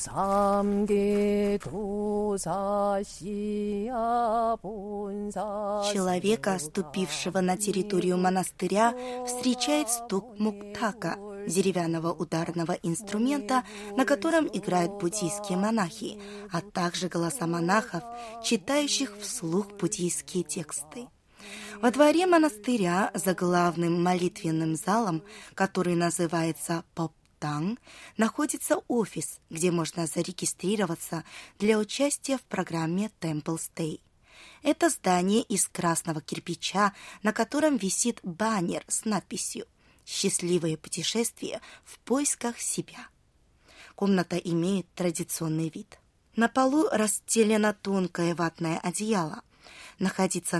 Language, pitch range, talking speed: Russian, 170-215 Hz, 85 wpm